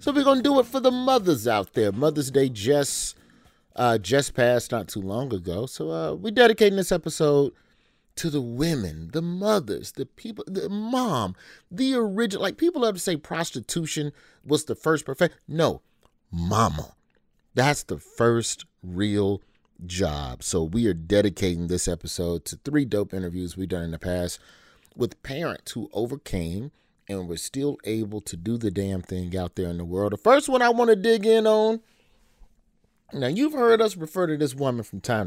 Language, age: English, 30-49